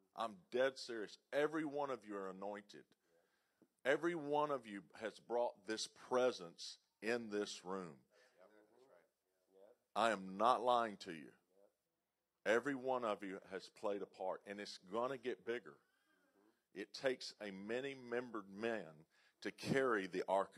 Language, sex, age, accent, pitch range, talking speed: English, male, 50-69, American, 105-145 Hz, 145 wpm